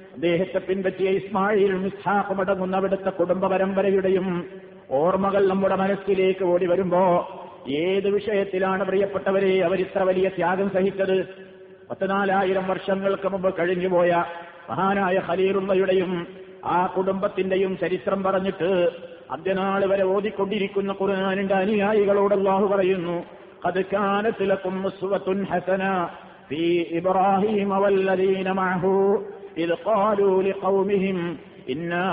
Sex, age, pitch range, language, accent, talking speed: male, 50-69, 185-195 Hz, Malayalam, native, 75 wpm